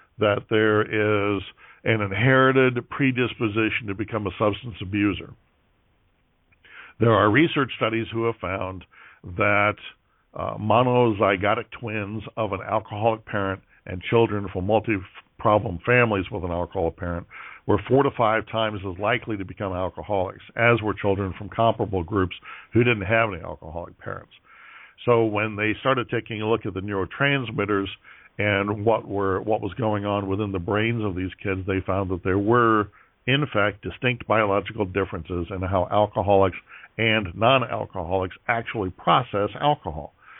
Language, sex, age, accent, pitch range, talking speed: English, male, 60-79, American, 95-115 Hz, 145 wpm